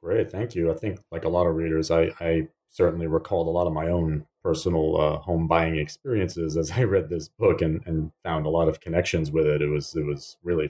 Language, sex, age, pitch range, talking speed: English, male, 30-49, 85-110 Hz, 240 wpm